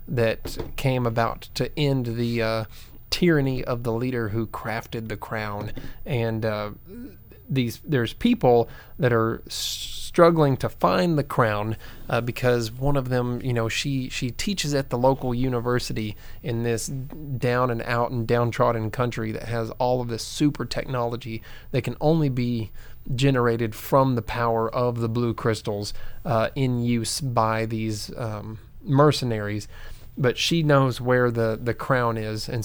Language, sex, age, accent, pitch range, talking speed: English, male, 30-49, American, 110-125 Hz, 150 wpm